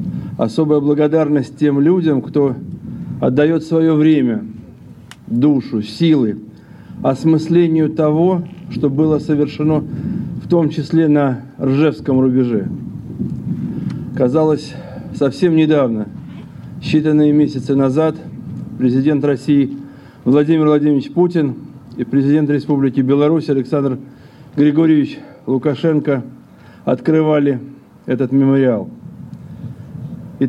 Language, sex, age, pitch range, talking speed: Russian, male, 50-69, 135-160 Hz, 85 wpm